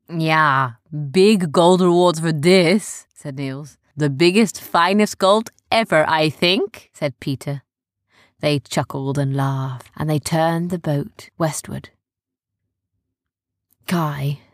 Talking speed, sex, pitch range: 115 wpm, female, 130-175 Hz